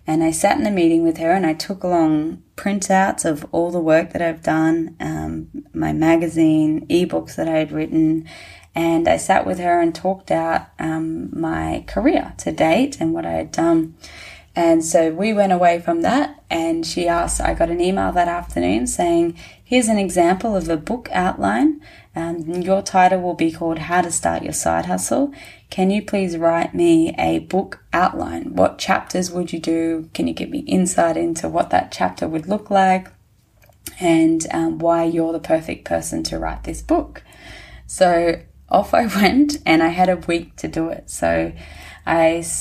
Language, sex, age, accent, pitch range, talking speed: English, female, 20-39, Australian, 160-180 Hz, 185 wpm